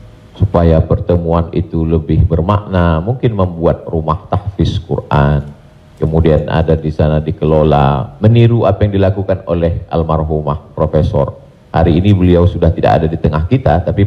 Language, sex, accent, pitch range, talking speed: Indonesian, male, native, 80-115 Hz, 135 wpm